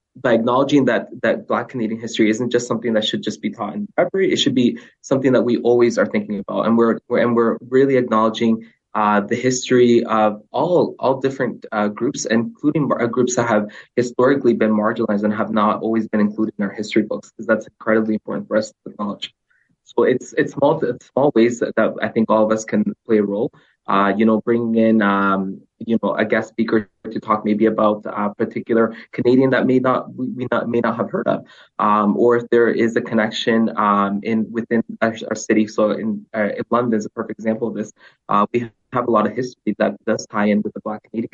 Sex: male